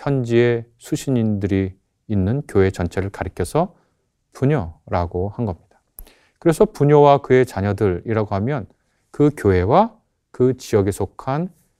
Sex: male